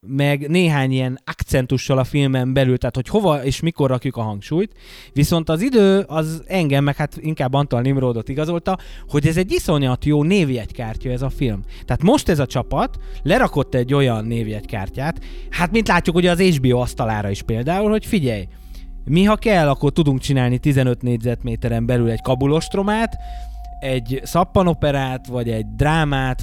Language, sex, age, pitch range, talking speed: Hungarian, male, 20-39, 120-160 Hz, 160 wpm